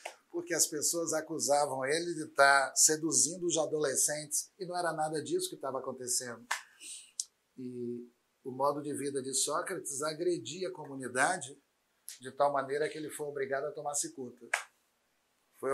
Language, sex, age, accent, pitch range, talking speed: Portuguese, male, 50-69, Brazilian, 150-205 Hz, 150 wpm